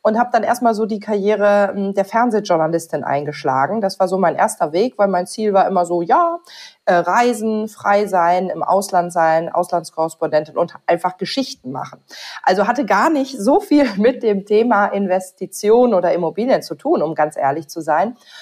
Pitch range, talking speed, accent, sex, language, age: 180-240 Hz, 175 wpm, German, female, German, 40-59